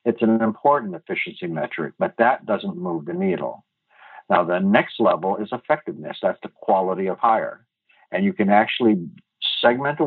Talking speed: 165 wpm